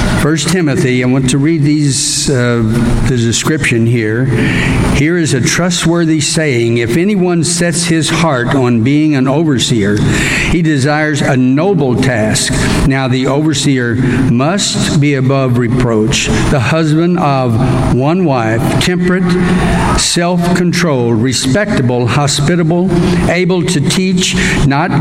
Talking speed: 120 wpm